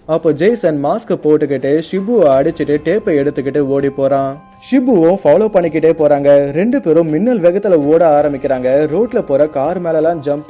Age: 20-39